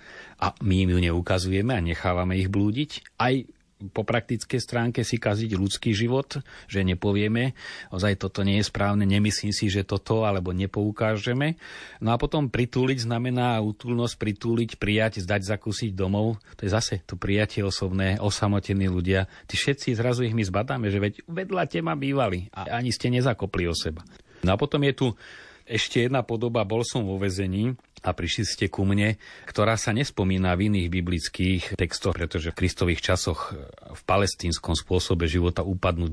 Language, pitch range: Slovak, 90-115 Hz